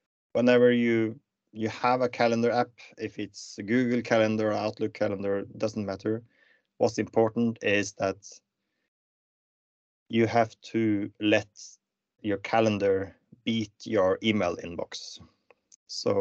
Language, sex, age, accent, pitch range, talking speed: English, male, 30-49, Norwegian, 105-125 Hz, 120 wpm